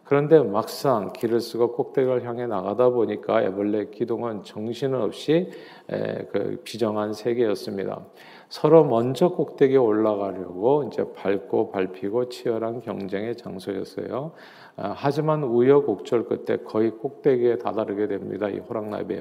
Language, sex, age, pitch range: Korean, male, 50-69, 105-135 Hz